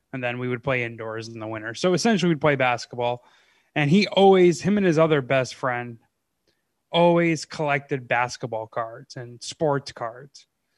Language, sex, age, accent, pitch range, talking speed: English, male, 20-39, American, 140-185 Hz, 165 wpm